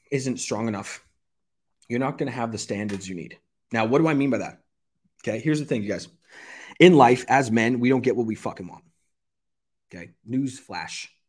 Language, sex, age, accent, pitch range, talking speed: English, male, 30-49, American, 115-160 Hz, 205 wpm